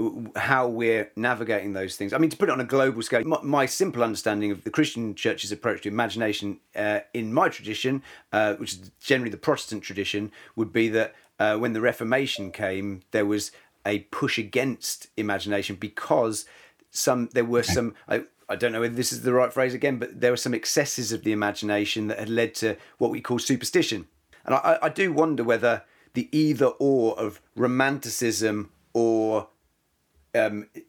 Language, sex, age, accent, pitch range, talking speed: English, male, 40-59, British, 105-130 Hz, 185 wpm